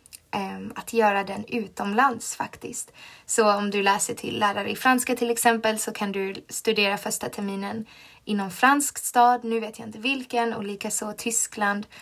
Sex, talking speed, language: female, 165 wpm, Swedish